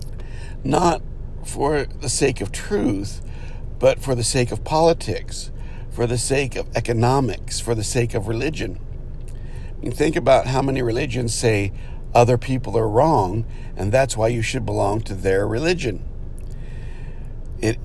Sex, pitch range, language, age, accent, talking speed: male, 110-135 Hz, English, 60-79, American, 140 wpm